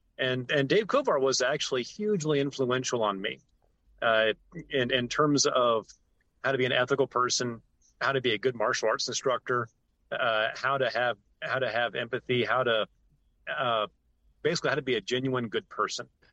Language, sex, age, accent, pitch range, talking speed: English, male, 30-49, American, 110-135 Hz, 175 wpm